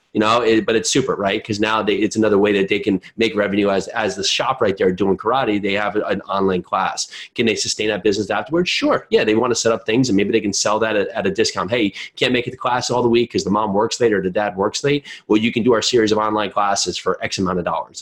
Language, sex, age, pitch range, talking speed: English, male, 30-49, 95-120 Hz, 295 wpm